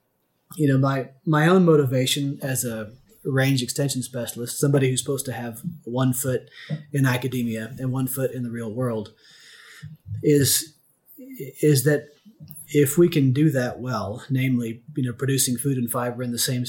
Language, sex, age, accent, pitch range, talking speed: English, male, 30-49, American, 120-145 Hz, 165 wpm